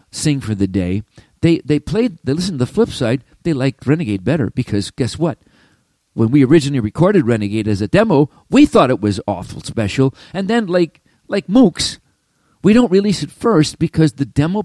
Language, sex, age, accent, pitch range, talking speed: English, male, 50-69, American, 110-170 Hz, 195 wpm